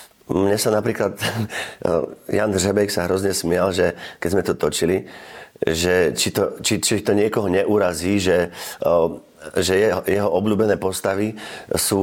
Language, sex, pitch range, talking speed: Slovak, male, 85-100 Hz, 140 wpm